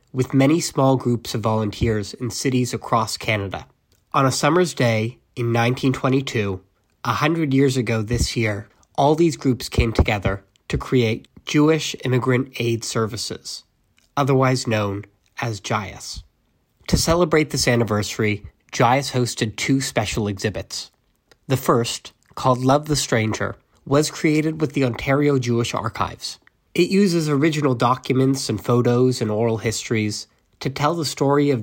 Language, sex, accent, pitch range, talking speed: English, male, American, 110-140 Hz, 140 wpm